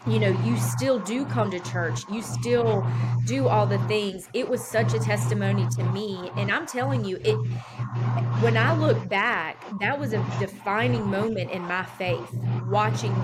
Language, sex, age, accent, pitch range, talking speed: English, female, 20-39, American, 120-200 Hz, 175 wpm